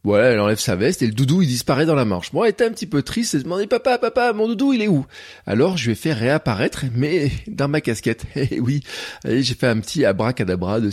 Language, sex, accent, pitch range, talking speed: French, male, French, 110-145 Hz, 275 wpm